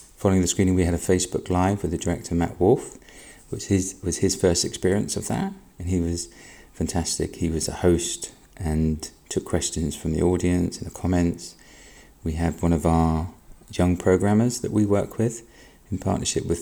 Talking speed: 190 wpm